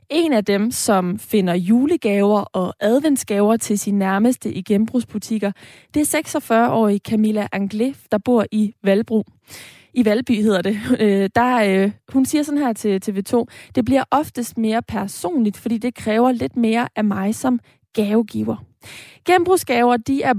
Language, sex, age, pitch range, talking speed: Danish, female, 20-39, 210-250 Hz, 145 wpm